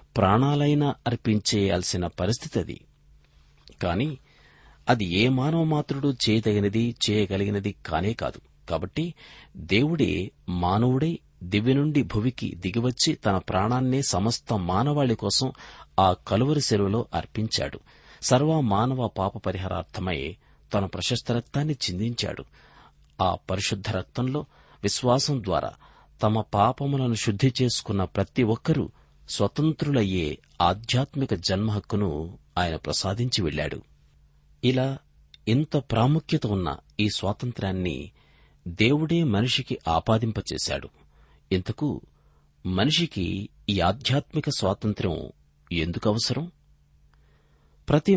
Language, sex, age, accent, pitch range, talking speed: Telugu, male, 50-69, native, 95-130 Hz, 85 wpm